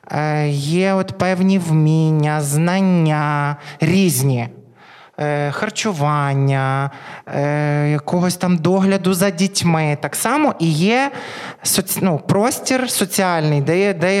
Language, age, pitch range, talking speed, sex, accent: Ukrainian, 20-39, 160-225 Hz, 85 wpm, male, native